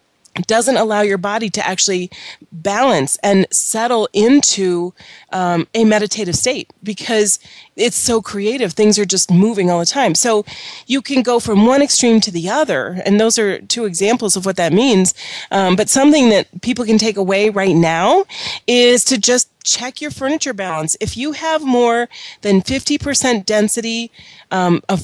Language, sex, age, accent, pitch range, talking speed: English, female, 30-49, American, 190-240 Hz, 170 wpm